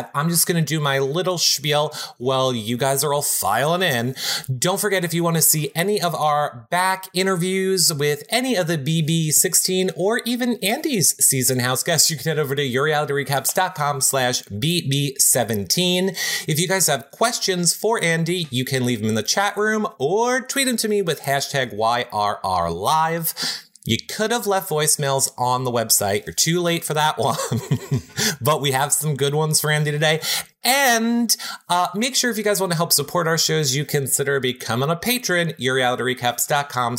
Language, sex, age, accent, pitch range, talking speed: German, male, 30-49, American, 135-185 Hz, 180 wpm